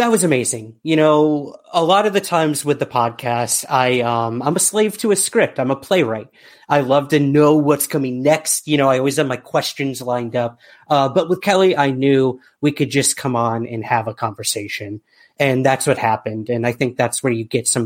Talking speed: 230 wpm